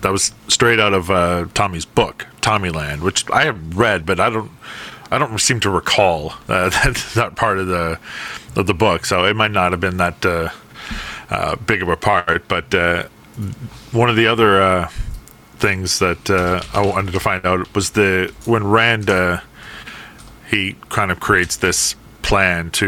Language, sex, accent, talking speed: English, male, American, 180 wpm